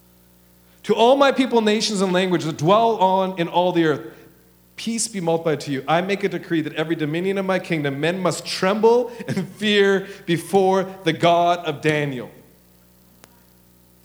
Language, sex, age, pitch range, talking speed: English, male, 40-59, 140-230 Hz, 170 wpm